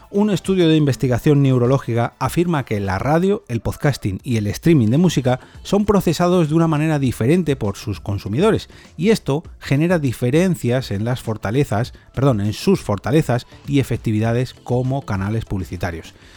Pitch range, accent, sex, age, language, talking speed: 115-155 Hz, Spanish, male, 30-49, Spanish, 150 wpm